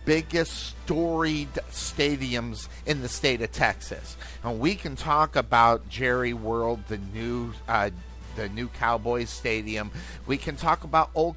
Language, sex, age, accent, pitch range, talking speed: English, male, 50-69, American, 110-150 Hz, 140 wpm